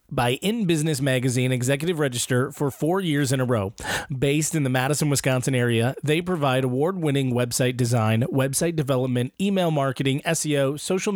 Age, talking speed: 30-49, 160 wpm